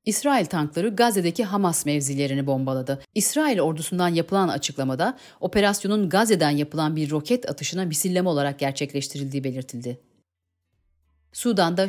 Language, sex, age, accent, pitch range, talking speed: Turkish, female, 40-59, native, 140-210 Hz, 105 wpm